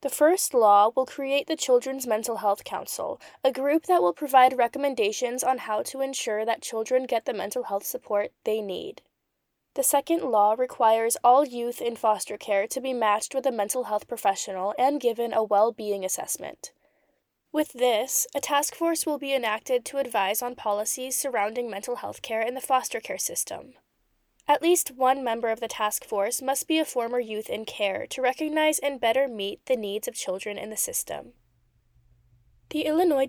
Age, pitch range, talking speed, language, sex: 10-29, 215-285 Hz, 180 wpm, English, female